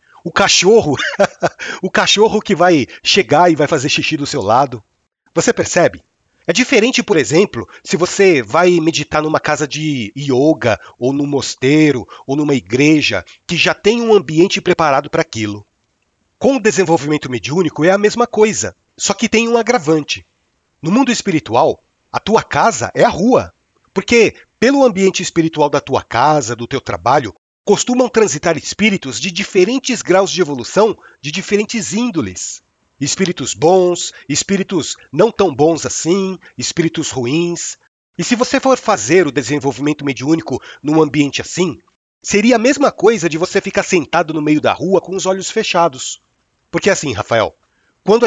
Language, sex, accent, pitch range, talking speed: Portuguese, male, Brazilian, 145-200 Hz, 155 wpm